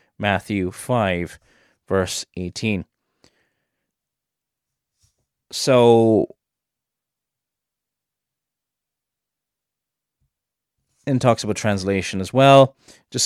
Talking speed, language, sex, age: 55 wpm, English, male, 20-39